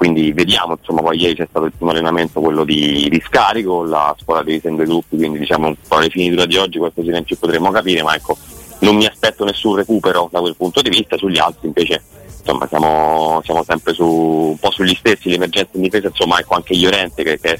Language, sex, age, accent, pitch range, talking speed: Italian, male, 30-49, native, 80-95 Hz, 225 wpm